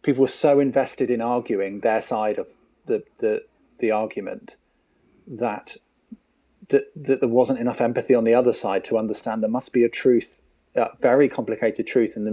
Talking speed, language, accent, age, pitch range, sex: 180 wpm, English, British, 30-49, 105-135 Hz, male